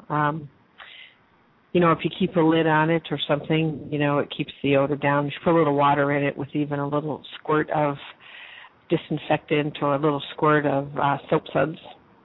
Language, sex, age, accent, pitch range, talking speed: English, female, 50-69, American, 140-160 Hz, 200 wpm